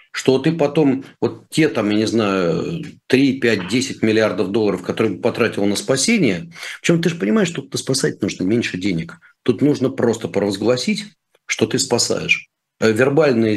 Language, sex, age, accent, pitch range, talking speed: Russian, male, 40-59, native, 95-140 Hz, 165 wpm